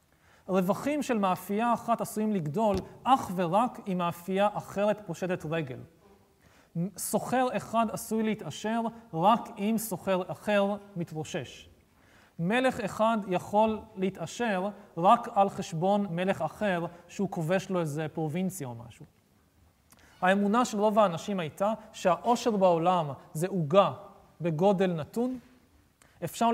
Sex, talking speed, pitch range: male, 115 wpm, 170-215 Hz